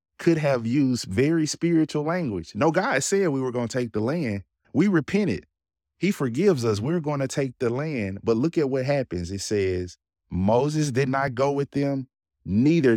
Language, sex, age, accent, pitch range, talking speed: English, male, 30-49, American, 90-120 Hz, 190 wpm